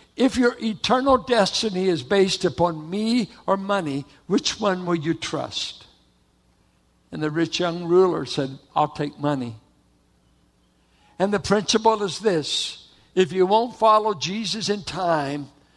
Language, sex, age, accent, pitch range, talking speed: English, male, 60-79, American, 140-190 Hz, 135 wpm